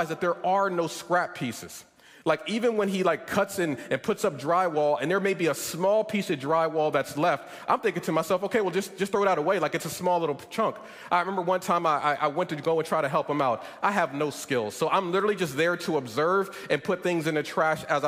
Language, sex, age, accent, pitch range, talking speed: English, male, 30-49, American, 170-220 Hz, 260 wpm